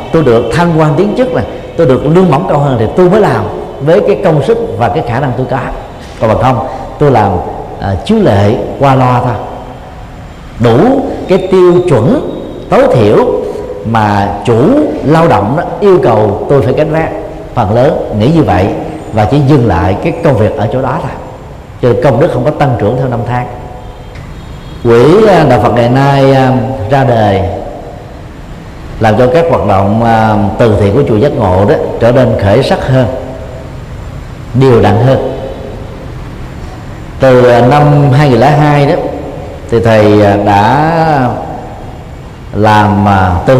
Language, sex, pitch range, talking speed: Vietnamese, male, 110-145 Hz, 165 wpm